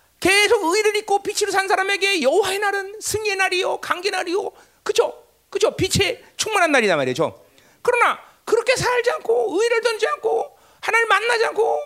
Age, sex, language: 40-59, male, Korean